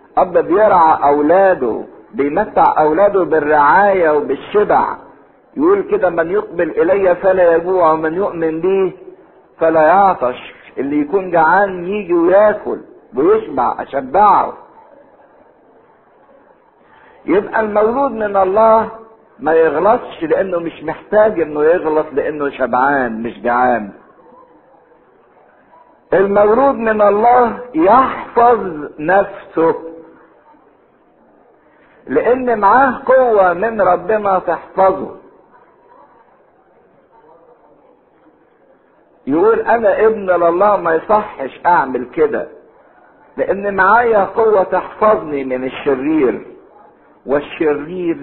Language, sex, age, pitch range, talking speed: English, male, 50-69, 160-235 Hz, 85 wpm